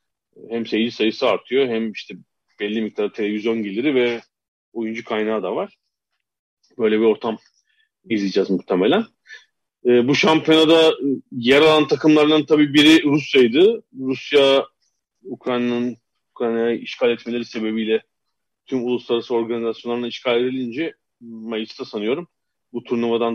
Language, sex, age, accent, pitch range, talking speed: Turkish, male, 40-59, native, 115-155 Hz, 115 wpm